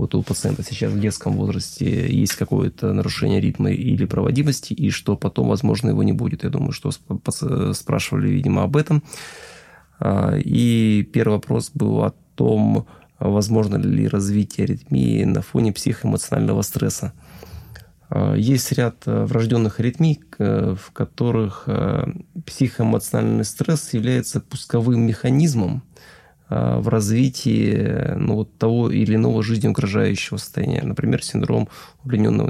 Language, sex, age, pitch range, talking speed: Russian, male, 20-39, 105-140 Hz, 120 wpm